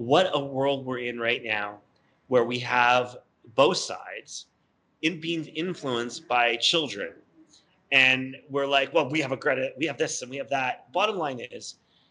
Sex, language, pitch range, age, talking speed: male, English, 120-145 Hz, 30-49, 175 wpm